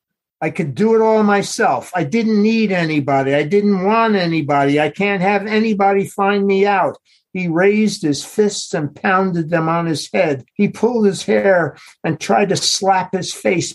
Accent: American